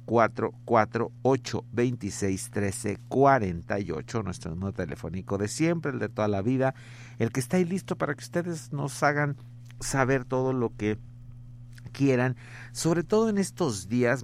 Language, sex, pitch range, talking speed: Spanish, male, 105-125 Hz, 145 wpm